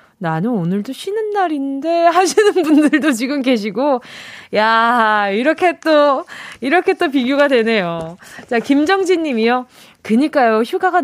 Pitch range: 215-315 Hz